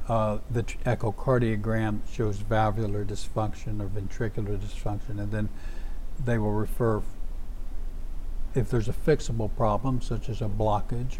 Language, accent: English, American